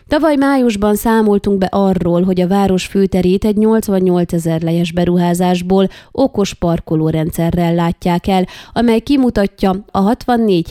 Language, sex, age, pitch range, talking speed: Hungarian, female, 20-39, 175-210 Hz, 125 wpm